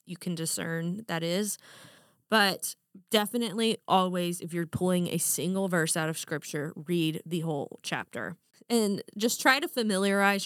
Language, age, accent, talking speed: English, 20-39, American, 150 wpm